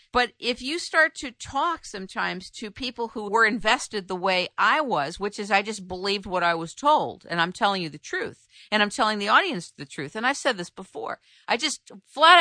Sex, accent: female, American